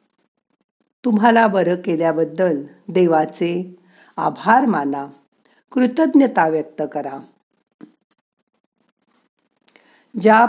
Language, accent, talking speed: Marathi, native, 55 wpm